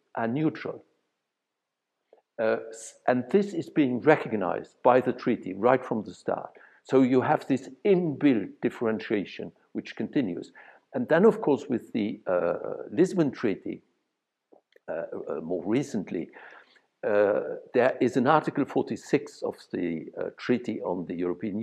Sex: male